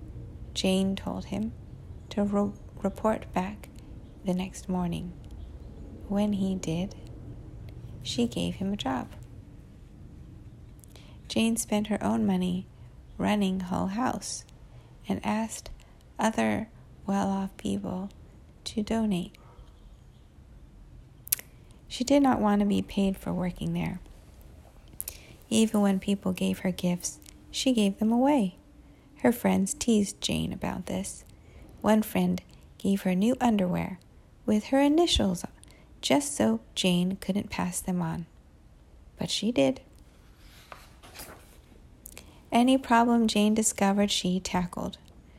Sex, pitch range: female, 175-215 Hz